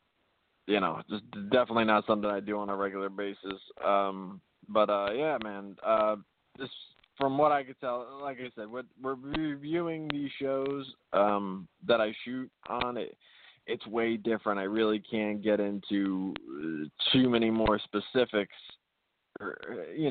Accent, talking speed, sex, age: American, 150 wpm, male, 20-39